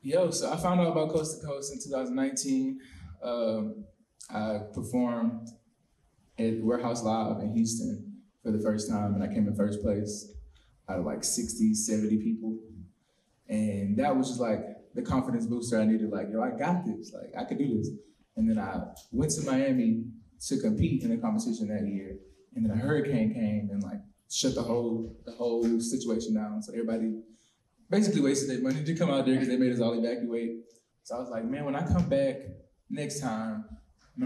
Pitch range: 110-175 Hz